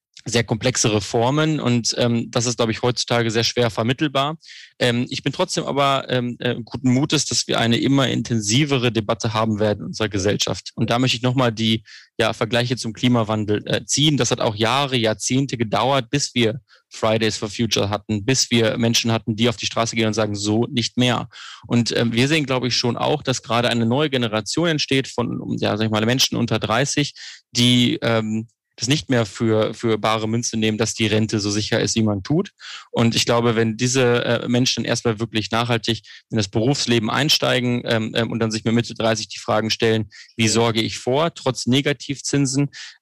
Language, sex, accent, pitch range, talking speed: German, male, German, 110-125 Hz, 195 wpm